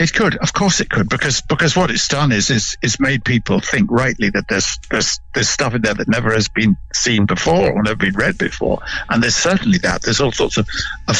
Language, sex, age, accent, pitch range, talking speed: English, male, 60-79, British, 115-175 Hz, 240 wpm